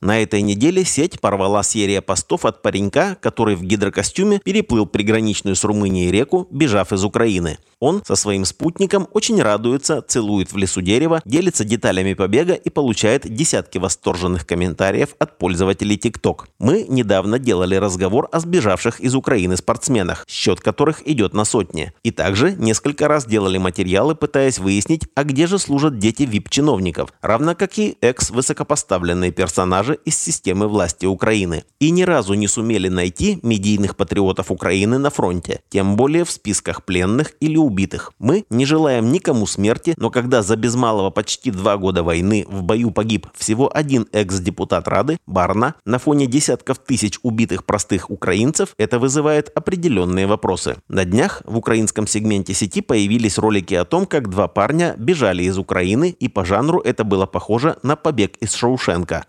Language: Russian